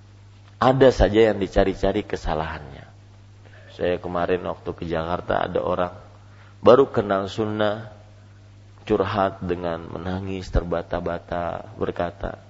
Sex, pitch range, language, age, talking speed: male, 90-105 Hz, Malay, 30-49, 95 wpm